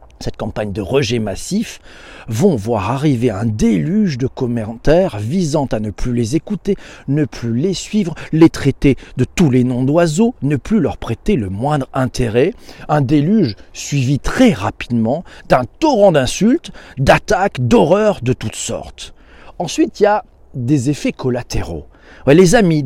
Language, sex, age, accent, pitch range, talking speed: French, male, 40-59, French, 120-180 Hz, 150 wpm